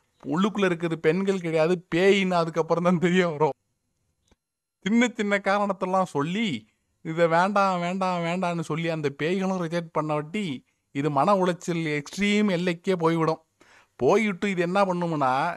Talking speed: 125 wpm